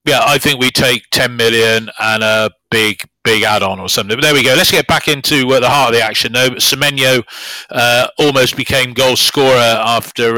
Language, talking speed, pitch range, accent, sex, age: English, 215 wpm, 115-135 Hz, British, male, 40-59